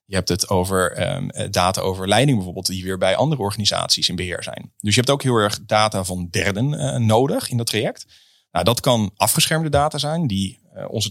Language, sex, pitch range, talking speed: Dutch, male, 95-120 Hz, 200 wpm